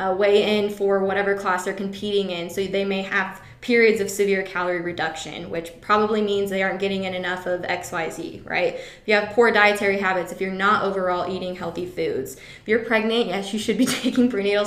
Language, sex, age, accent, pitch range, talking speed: English, female, 20-39, American, 185-215 Hz, 210 wpm